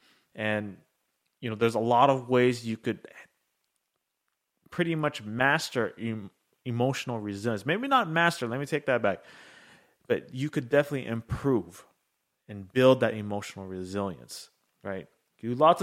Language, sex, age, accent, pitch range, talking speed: English, male, 30-49, American, 105-130 Hz, 140 wpm